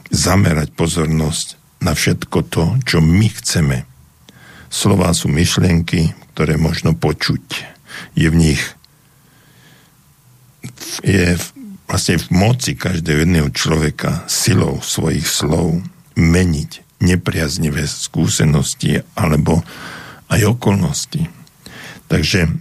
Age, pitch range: 60-79, 80-105 Hz